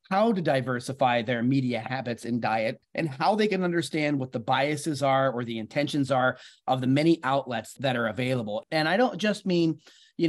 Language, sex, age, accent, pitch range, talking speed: English, male, 30-49, American, 130-170 Hz, 200 wpm